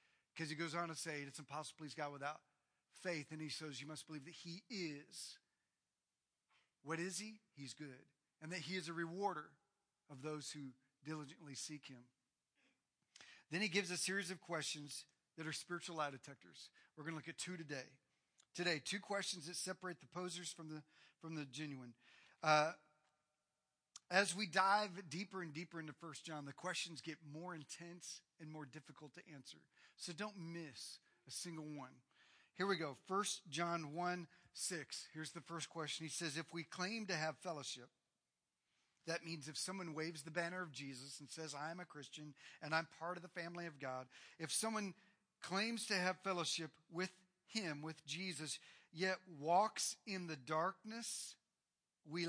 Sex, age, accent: male, 40-59, American